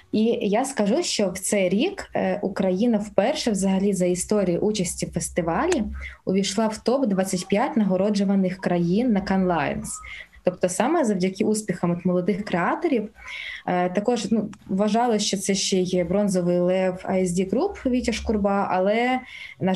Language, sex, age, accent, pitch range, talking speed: Ukrainian, female, 20-39, native, 185-235 Hz, 135 wpm